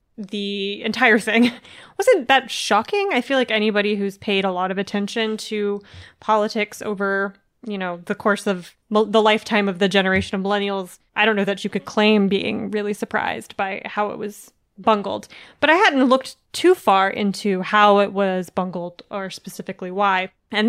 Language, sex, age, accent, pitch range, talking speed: English, female, 20-39, American, 200-245 Hz, 175 wpm